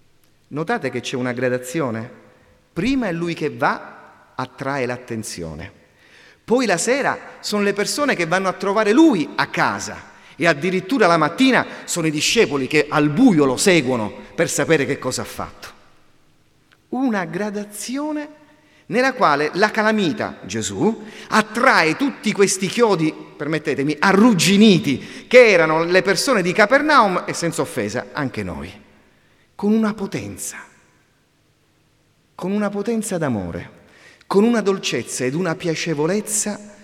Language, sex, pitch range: Italian, male, 135-220 Hz